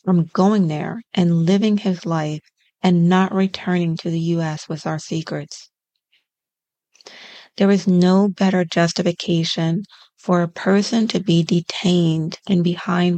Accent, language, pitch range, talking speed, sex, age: American, English, 170-205 Hz, 130 wpm, female, 40-59